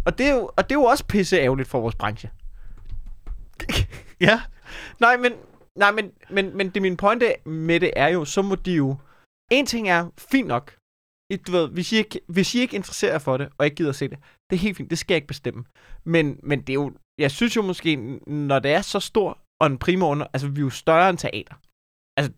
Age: 20-39